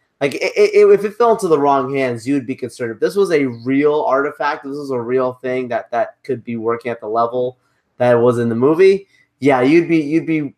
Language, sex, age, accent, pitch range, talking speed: English, male, 20-39, American, 125-155 Hz, 250 wpm